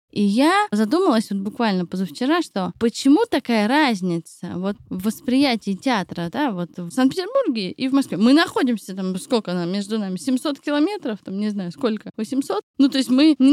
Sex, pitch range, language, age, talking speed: female, 200-275 Hz, Russian, 20-39, 175 wpm